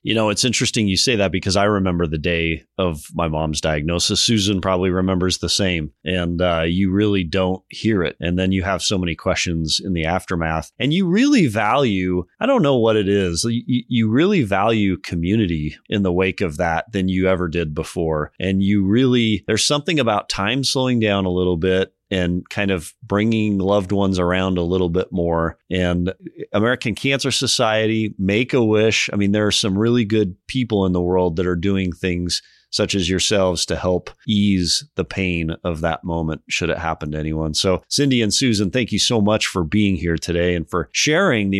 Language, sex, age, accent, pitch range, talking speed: English, male, 30-49, American, 90-115 Hz, 200 wpm